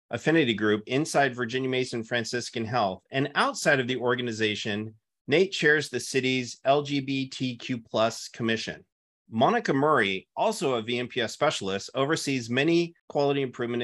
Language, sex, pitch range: English, male, 115-150 Hz